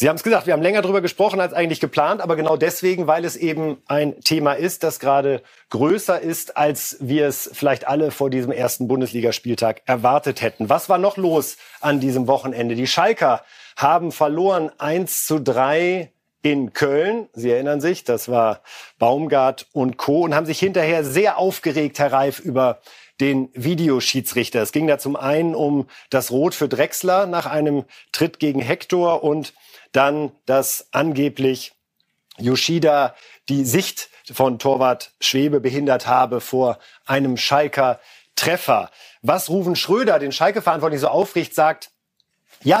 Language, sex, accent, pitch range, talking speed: German, male, German, 135-180 Hz, 155 wpm